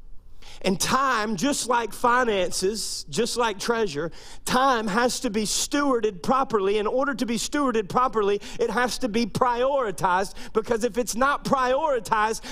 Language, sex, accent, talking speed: English, male, American, 145 wpm